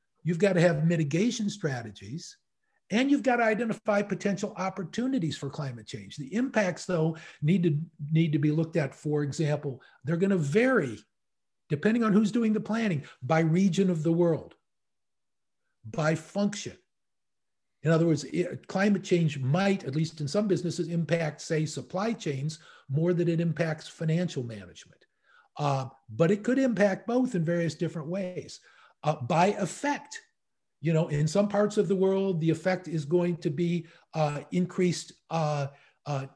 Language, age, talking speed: English, 50-69, 160 wpm